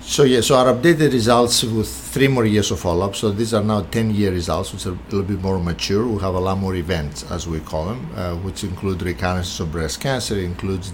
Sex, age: male, 50-69